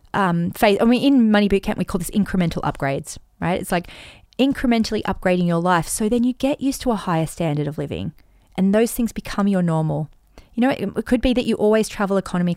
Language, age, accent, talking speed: English, 30-49, Australian, 220 wpm